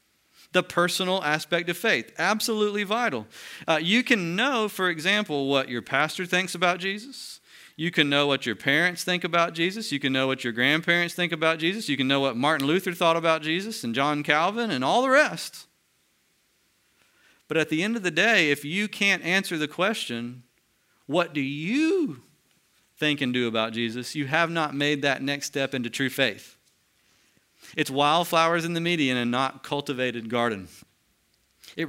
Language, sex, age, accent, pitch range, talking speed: English, male, 40-59, American, 130-175 Hz, 175 wpm